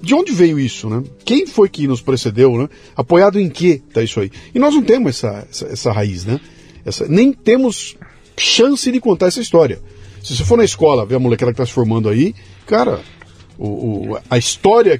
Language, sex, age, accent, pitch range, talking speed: Portuguese, male, 50-69, Brazilian, 115-170 Hz, 210 wpm